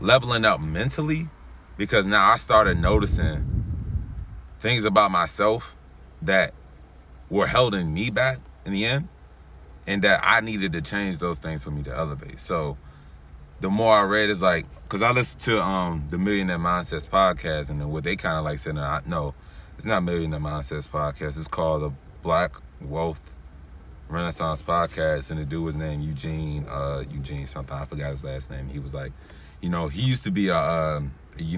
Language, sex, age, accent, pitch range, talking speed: English, male, 30-49, American, 75-125 Hz, 175 wpm